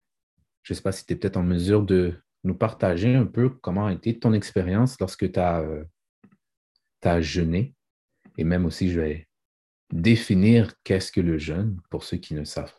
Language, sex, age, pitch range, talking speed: French, male, 30-49, 90-115 Hz, 190 wpm